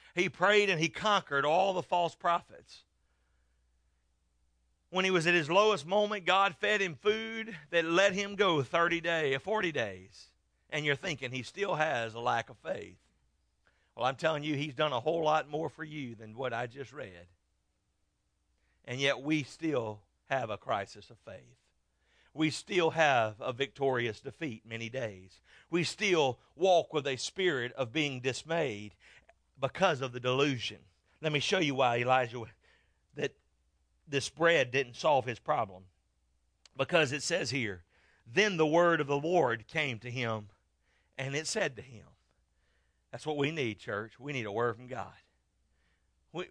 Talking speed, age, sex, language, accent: 165 wpm, 50-69, male, English, American